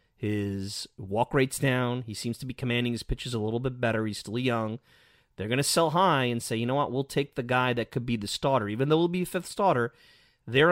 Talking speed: 250 wpm